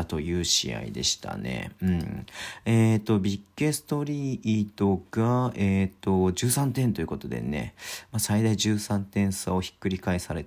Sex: male